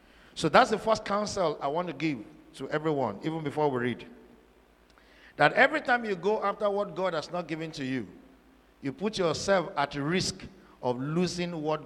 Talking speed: 180 wpm